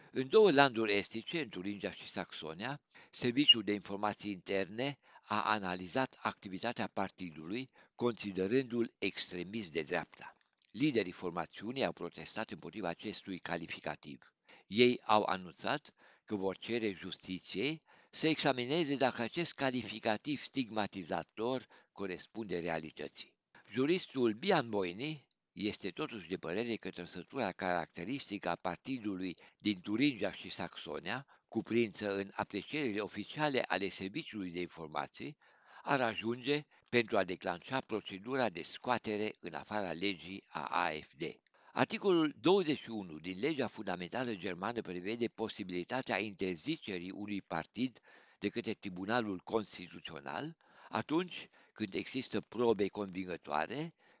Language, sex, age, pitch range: Romanian, male, 60-79, 95-125 Hz